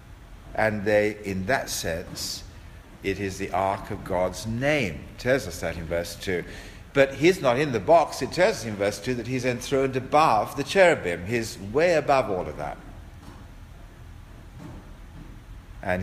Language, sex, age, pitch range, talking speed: English, male, 60-79, 90-115 Hz, 165 wpm